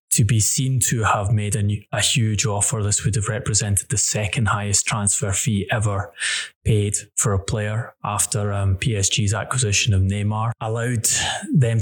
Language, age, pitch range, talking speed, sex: English, 20-39, 100-115 Hz, 160 wpm, male